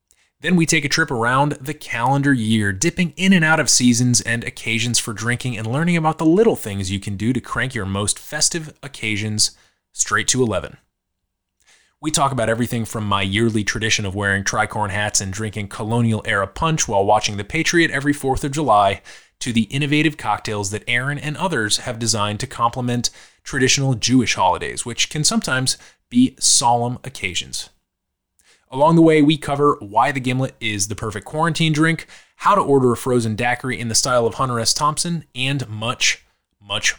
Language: English